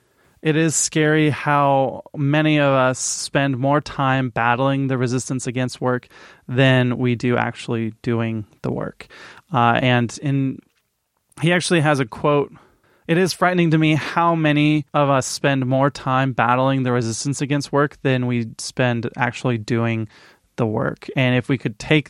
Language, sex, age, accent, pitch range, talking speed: English, male, 20-39, American, 120-140 Hz, 165 wpm